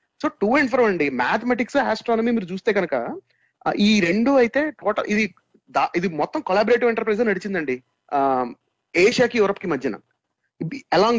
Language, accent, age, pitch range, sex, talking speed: Telugu, native, 30-49, 180-245 Hz, male, 135 wpm